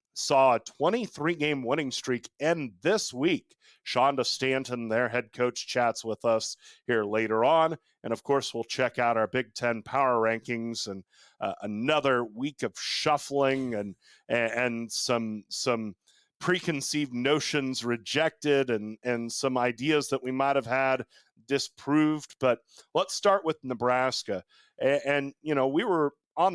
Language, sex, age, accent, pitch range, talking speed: English, male, 40-59, American, 120-150 Hz, 150 wpm